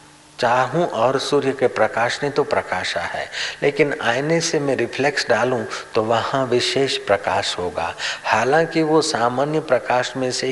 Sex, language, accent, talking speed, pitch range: male, Hindi, native, 150 wpm, 115-155 Hz